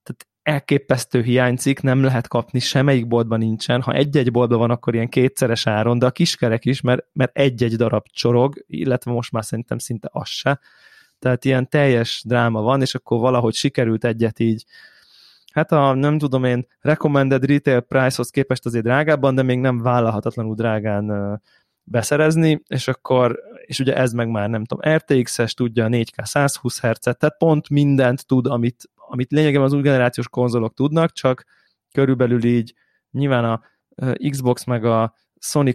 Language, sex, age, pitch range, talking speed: Hungarian, male, 20-39, 120-135 Hz, 160 wpm